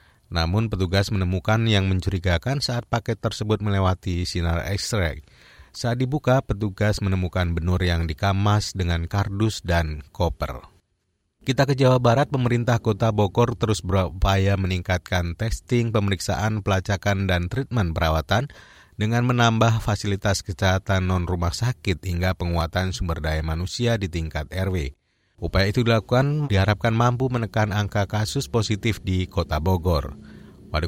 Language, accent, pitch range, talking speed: Indonesian, native, 85-110 Hz, 125 wpm